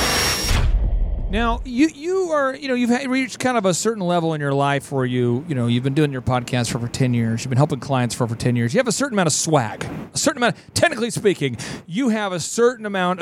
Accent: American